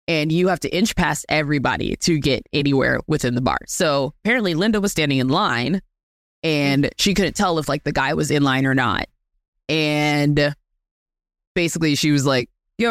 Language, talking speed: English, 180 wpm